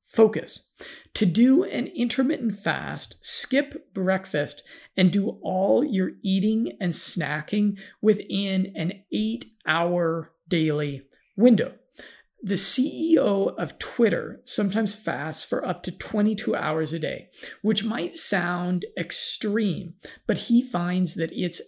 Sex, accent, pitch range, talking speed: male, American, 175-220 Hz, 120 wpm